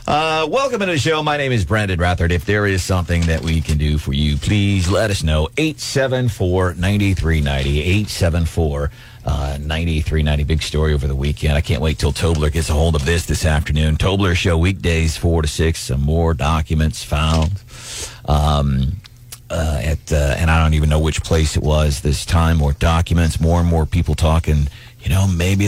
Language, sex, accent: English, male, American